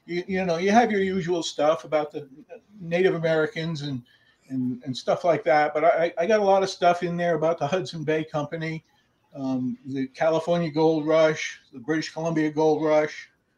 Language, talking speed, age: English, 190 wpm, 50-69